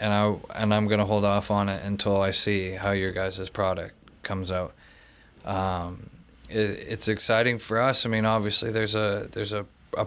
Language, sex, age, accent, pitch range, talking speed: English, male, 20-39, American, 95-110 Hz, 195 wpm